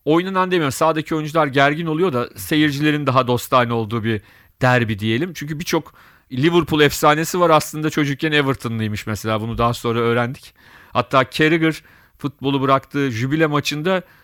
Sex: male